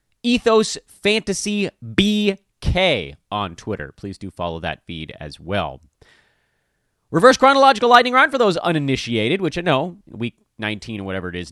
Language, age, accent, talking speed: English, 30-49, American, 145 wpm